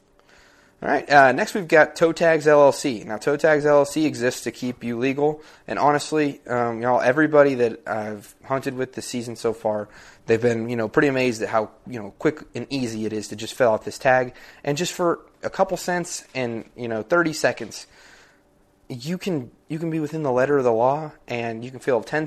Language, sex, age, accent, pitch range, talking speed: English, male, 20-39, American, 110-130 Hz, 215 wpm